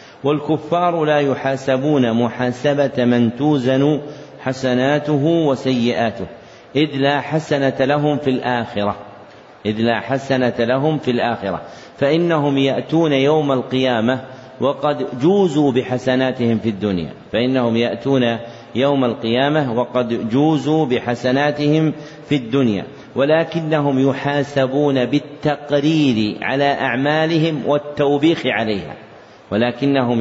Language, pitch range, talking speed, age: Arabic, 125-150 Hz, 90 wpm, 50-69